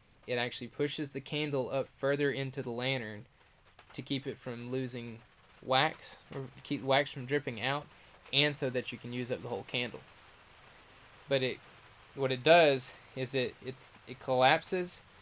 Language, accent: English, American